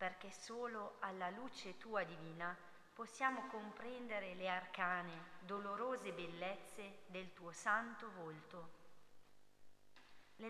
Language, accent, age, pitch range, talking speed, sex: Italian, native, 40-59, 175-215 Hz, 95 wpm, female